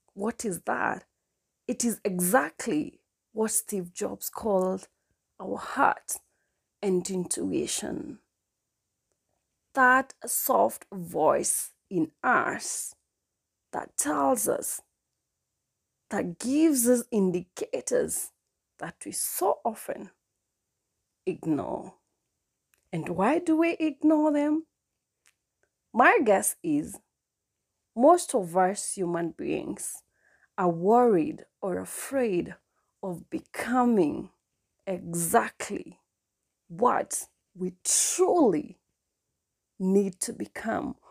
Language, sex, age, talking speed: English, female, 30-49, 85 wpm